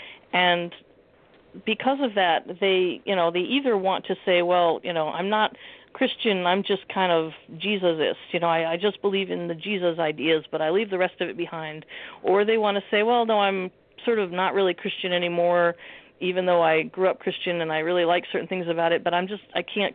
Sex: female